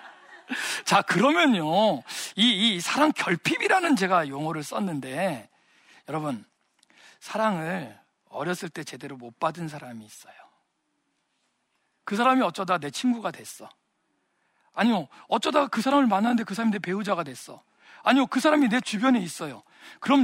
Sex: male